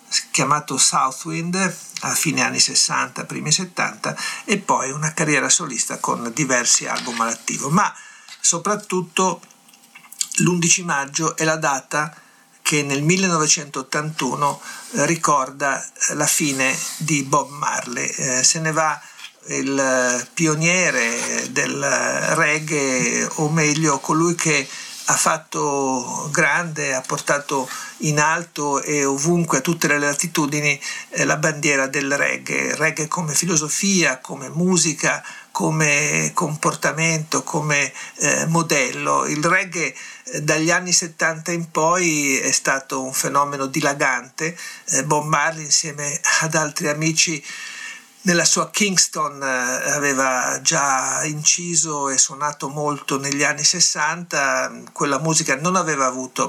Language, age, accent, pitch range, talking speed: Italian, 60-79, native, 140-170 Hz, 115 wpm